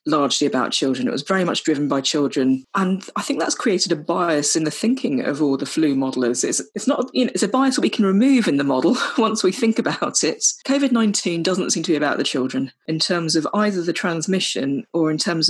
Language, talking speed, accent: English, 240 wpm, British